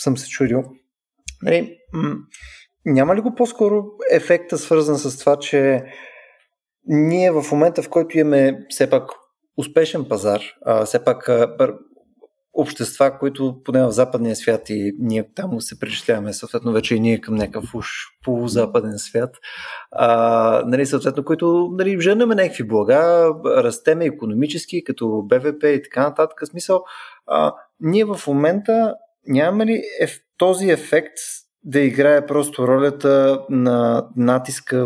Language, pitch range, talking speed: Bulgarian, 120-160 Hz, 135 wpm